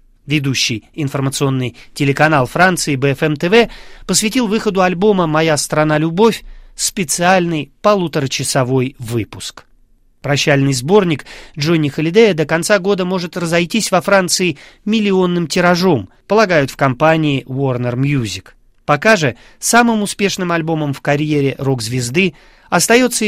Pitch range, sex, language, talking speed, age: 135-190 Hz, male, Russian, 105 wpm, 30-49